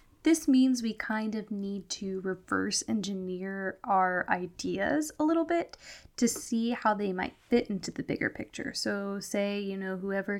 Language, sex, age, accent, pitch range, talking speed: English, female, 10-29, American, 190-245 Hz, 165 wpm